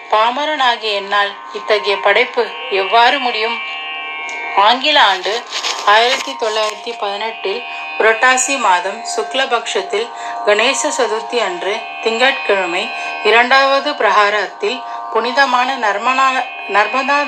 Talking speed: 75 wpm